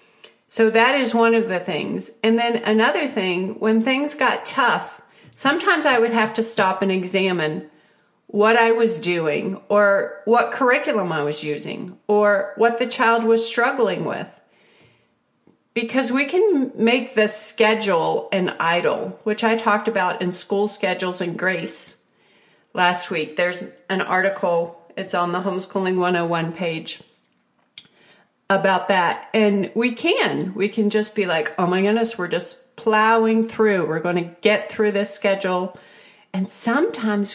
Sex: female